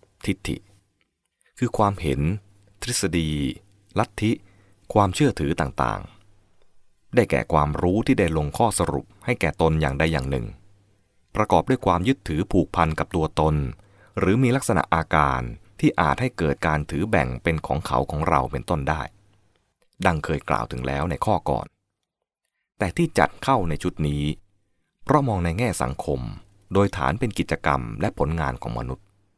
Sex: male